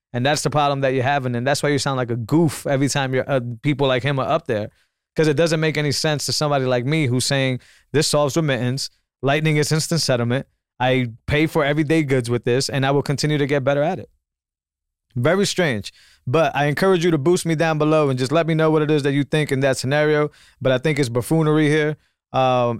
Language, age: English, 20-39